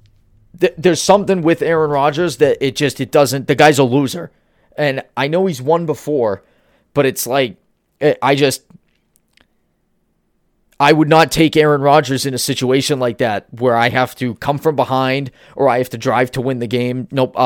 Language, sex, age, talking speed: English, male, 30-49, 180 wpm